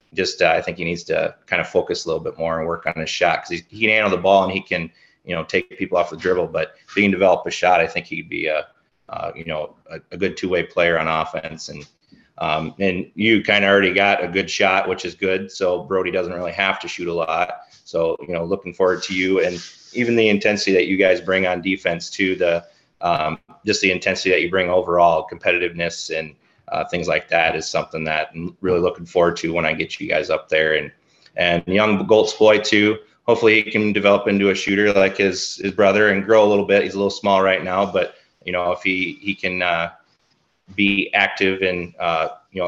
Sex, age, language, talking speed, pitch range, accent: male, 30-49, English, 235 wpm, 90-105 Hz, American